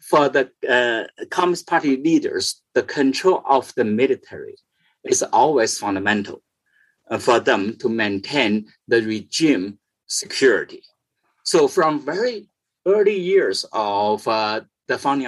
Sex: male